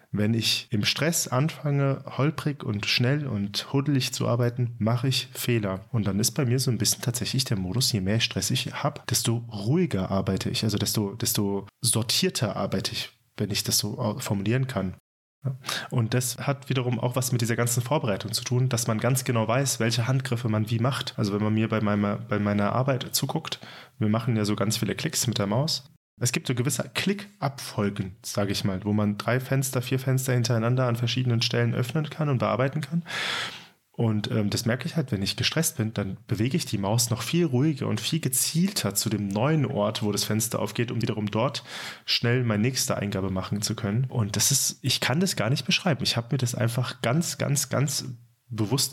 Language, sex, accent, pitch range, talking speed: German, male, German, 110-130 Hz, 205 wpm